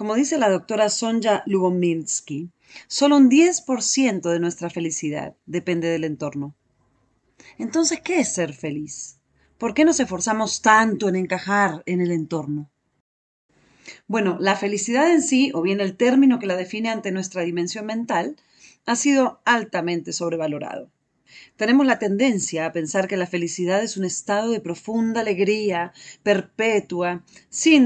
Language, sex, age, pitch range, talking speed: Spanish, female, 40-59, 170-225 Hz, 140 wpm